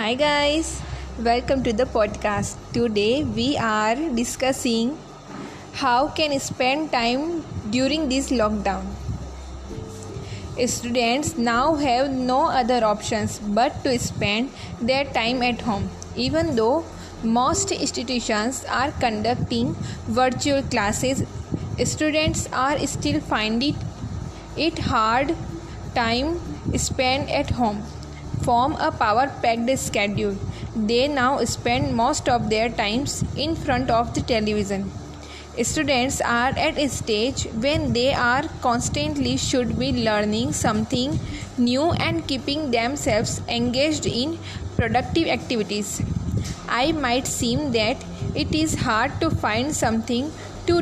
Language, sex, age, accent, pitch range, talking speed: Hindi, female, 10-29, native, 225-280 Hz, 115 wpm